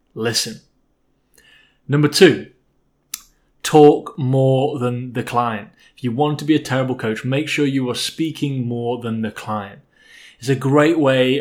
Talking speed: 155 wpm